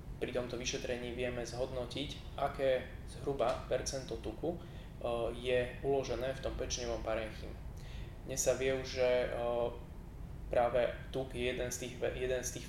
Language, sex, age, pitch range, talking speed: Slovak, male, 20-39, 115-130 Hz, 130 wpm